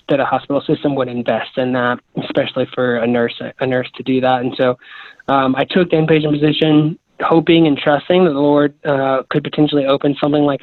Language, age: English, 20-39